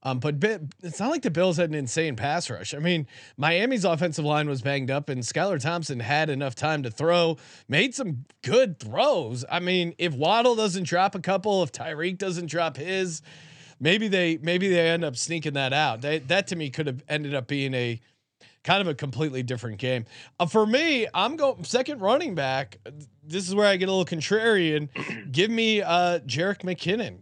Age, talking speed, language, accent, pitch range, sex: 30-49, 200 wpm, English, American, 145-185 Hz, male